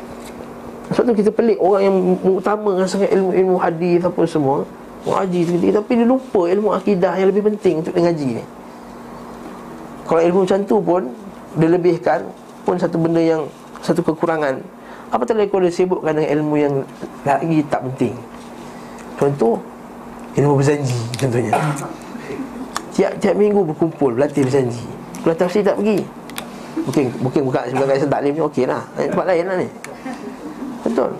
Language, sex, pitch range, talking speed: Malay, male, 150-200 Hz, 145 wpm